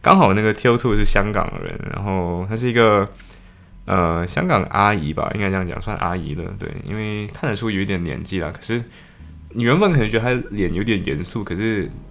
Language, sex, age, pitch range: Chinese, male, 20-39, 85-115 Hz